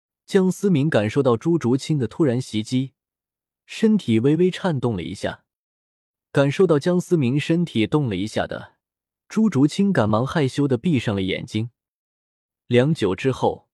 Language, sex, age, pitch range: Chinese, male, 20-39, 115-170 Hz